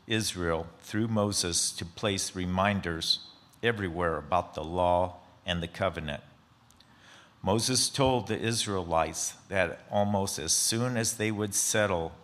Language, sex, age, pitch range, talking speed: English, male, 50-69, 85-105 Hz, 125 wpm